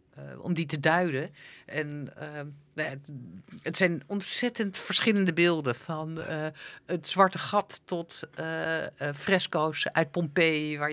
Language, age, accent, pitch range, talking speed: Dutch, 50-69, Dutch, 145-170 Hz, 150 wpm